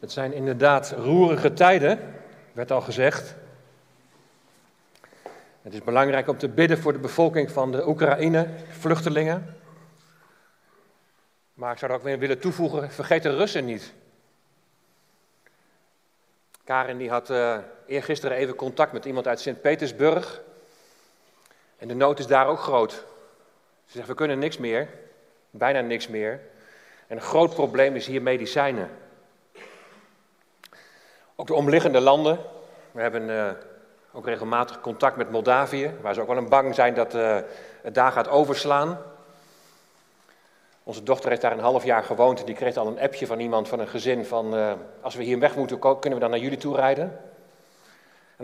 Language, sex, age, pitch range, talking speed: Dutch, male, 40-59, 125-150 Hz, 155 wpm